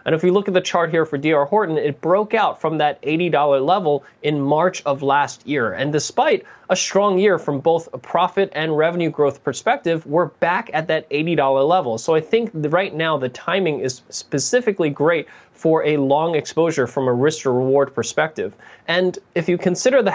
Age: 20-39